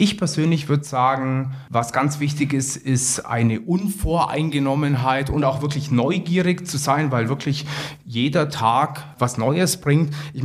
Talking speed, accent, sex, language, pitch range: 145 wpm, German, male, German, 125-145 Hz